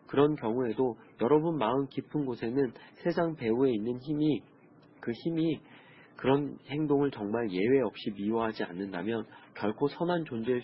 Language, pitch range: Korean, 105-140 Hz